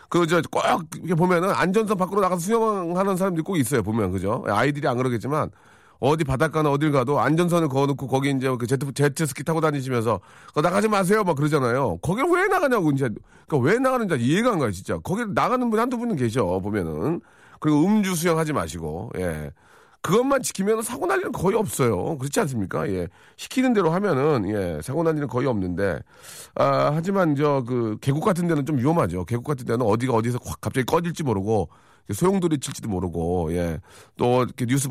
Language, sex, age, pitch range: Korean, male, 40-59, 115-170 Hz